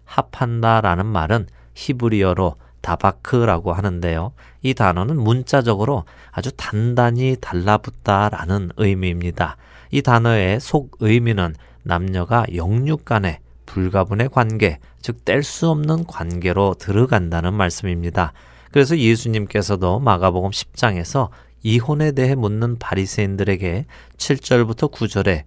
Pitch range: 90-120 Hz